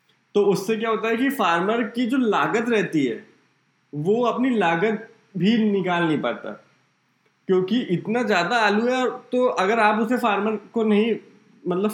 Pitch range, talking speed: 155-210 Hz, 160 wpm